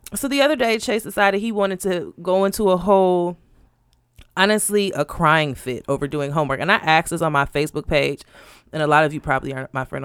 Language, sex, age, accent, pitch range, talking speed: English, female, 30-49, American, 155-205 Hz, 220 wpm